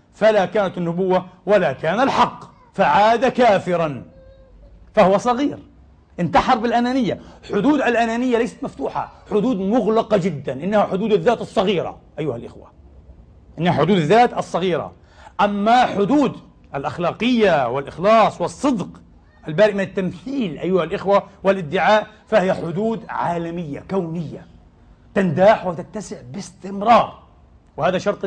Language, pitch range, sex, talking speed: English, 175-230 Hz, male, 105 wpm